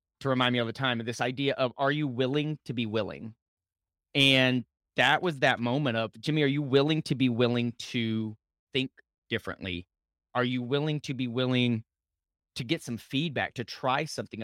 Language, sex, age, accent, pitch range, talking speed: English, male, 30-49, American, 120-160 Hz, 185 wpm